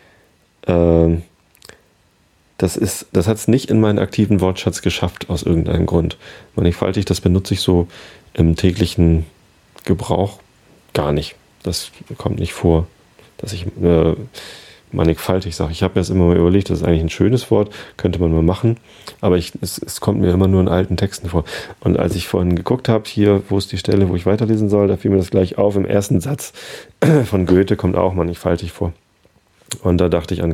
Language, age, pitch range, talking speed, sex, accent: German, 40-59, 85-105 Hz, 185 wpm, male, German